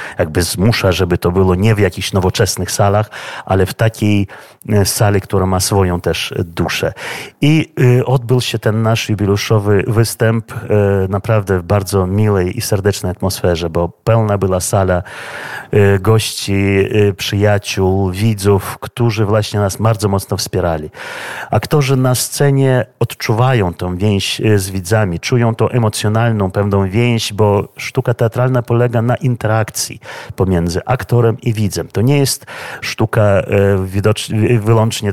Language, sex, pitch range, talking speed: Polish, male, 95-115 Hz, 125 wpm